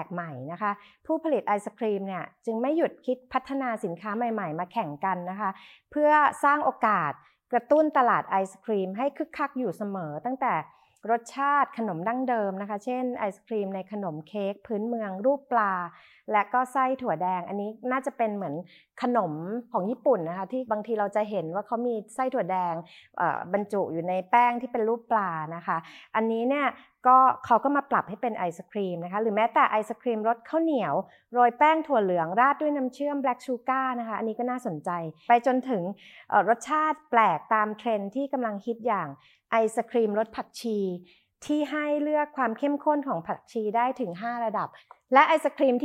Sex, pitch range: female, 205-260 Hz